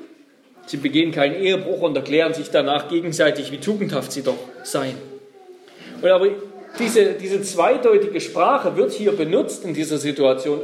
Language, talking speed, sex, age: German, 140 wpm, male, 40-59